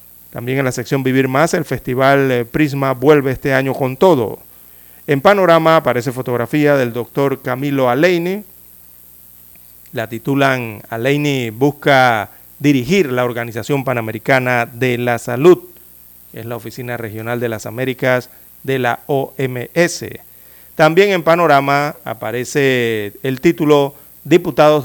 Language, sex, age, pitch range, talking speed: Spanish, male, 40-59, 120-150 Hz, 120 wpm